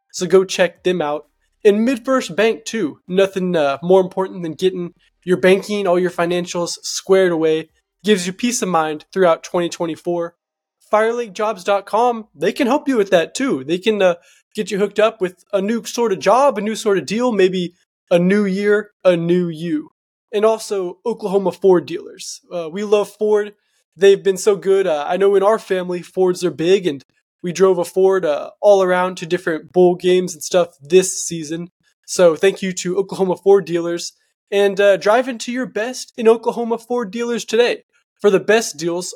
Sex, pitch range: male, 175-215 Hz